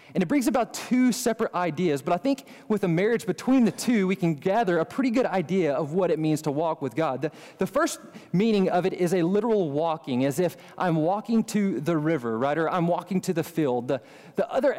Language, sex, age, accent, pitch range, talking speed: English, male, 20-39, American, 160-215 Hz, 235 wpm